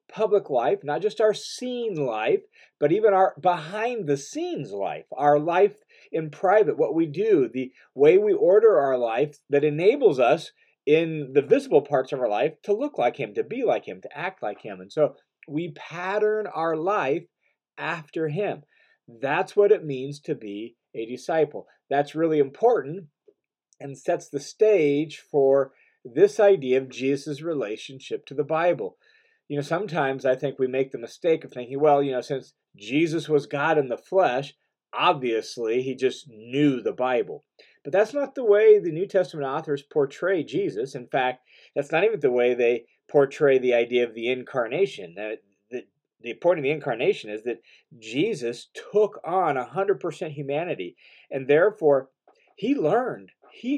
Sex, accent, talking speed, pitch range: male, American, 165 wpm, 140-220 Hz